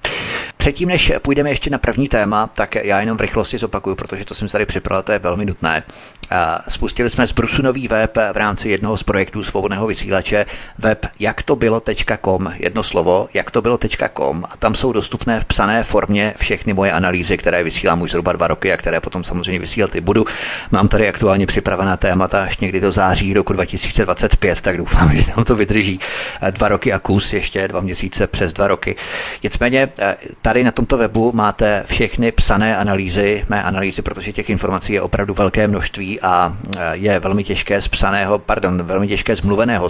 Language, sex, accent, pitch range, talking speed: Czech, male, native, 95-105 Hz, 185 wpm